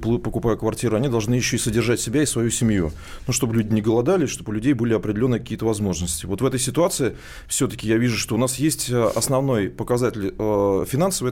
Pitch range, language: 115-135 Hz, Russian